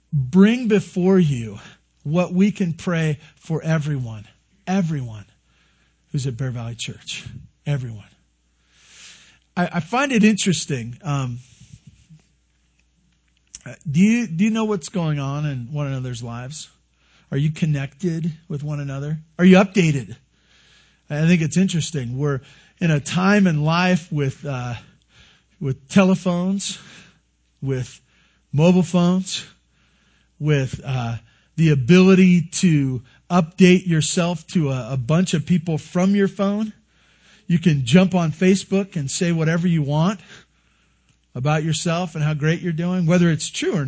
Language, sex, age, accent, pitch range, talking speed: English, male, 50-69, American, 135-185 Hz, 135 wpm